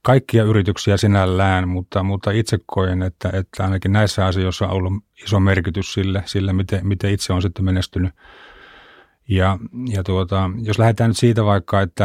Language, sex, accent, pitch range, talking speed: Finnish, male, native, 95-105 Hz, 165 wpm